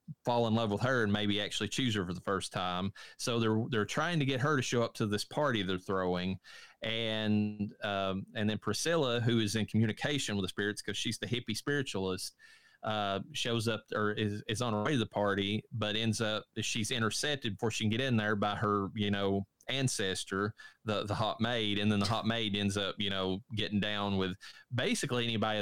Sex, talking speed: male, 215 wpm